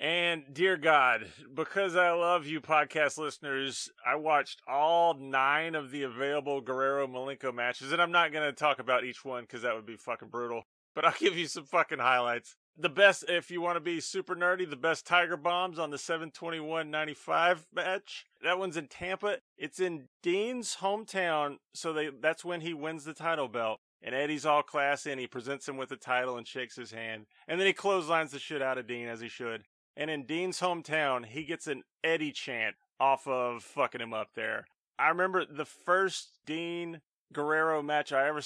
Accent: American